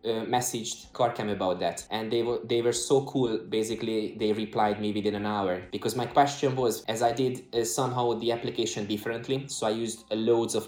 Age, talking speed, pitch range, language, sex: 20-39, 210 wpm, 105-120 Hz, English, male